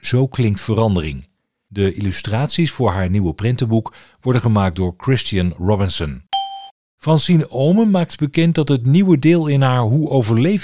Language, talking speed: Dutch, 145 wpm